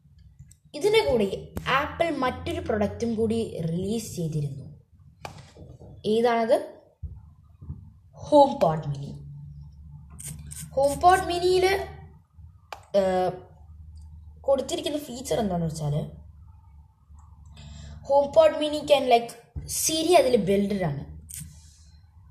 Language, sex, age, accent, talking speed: Malayalam, female, 20-39, native, 65 wpm